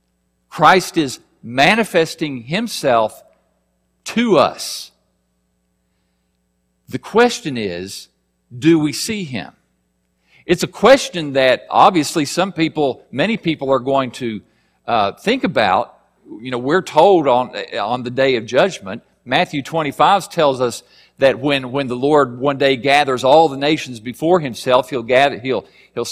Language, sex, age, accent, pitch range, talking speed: English, male, 50-69, American, 95-155 Hz, 135 wpm